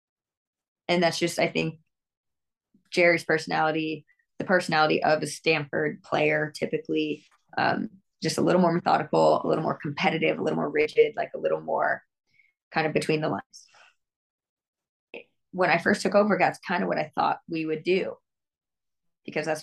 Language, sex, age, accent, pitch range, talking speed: English, female, 20-39, American, 160-230 Hz, 160 wpm